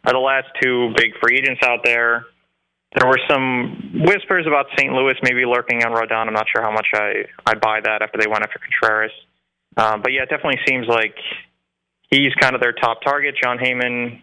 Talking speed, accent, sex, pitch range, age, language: 205 wpm, American, male, 110-130 Hz, 20-39, English